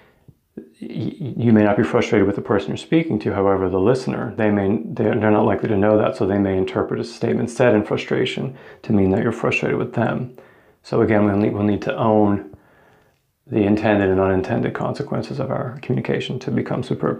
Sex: male